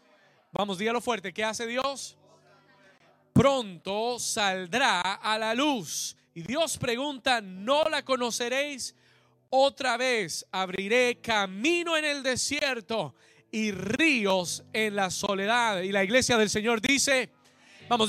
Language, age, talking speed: Spanish, 30-49, 120 wpm